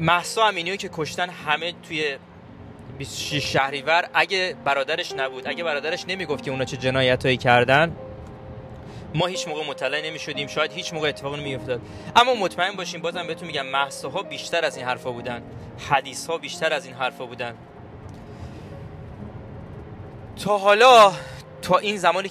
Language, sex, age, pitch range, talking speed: Persian, male, 20-39, 120-175 Hz, 135 wpm